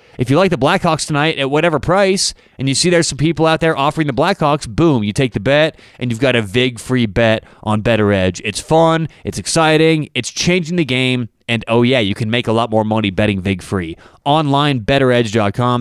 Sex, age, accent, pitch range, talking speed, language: male, 30-49, American, 110-155 Hz, 215 wpm, English